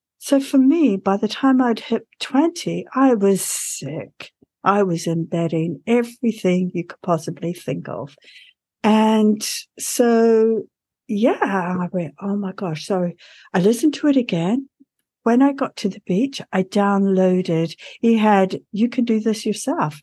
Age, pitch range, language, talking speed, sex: 60-79, 185-245 Hz, English, 150 wpm, female